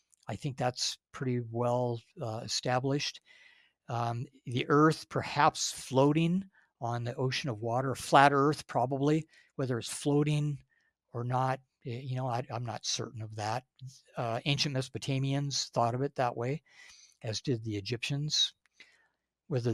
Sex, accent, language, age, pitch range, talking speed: male, American, English, 60-79, 120-145 Hz, 135 wpm